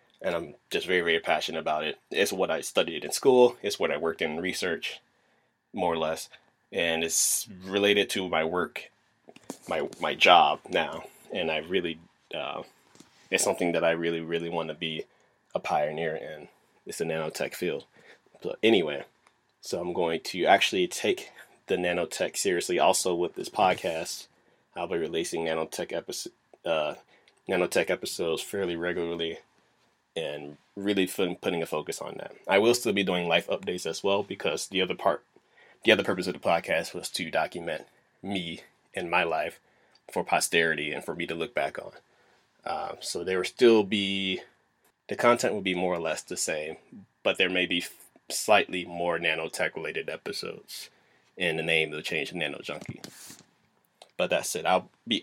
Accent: American